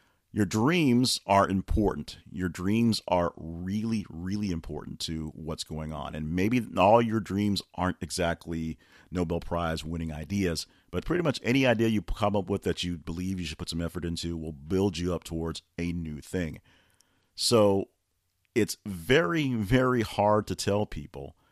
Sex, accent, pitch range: male, American, 85-105 Hz